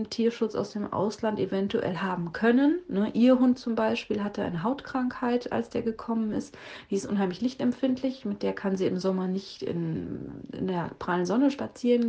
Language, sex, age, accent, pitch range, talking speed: German, female, 30-49, German, 190-230 Hz, 175 wpm